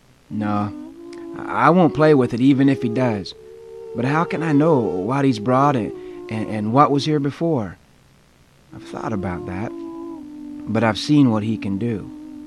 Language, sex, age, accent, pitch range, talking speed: English, male, 30-49, American, 105-155 Hz, 170 wpm